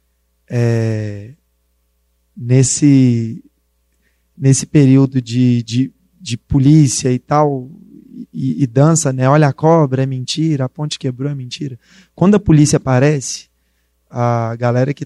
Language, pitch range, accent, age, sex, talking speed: Portuguese, 125-180 Hz, Brazilian, 20-39, male, 125 wpm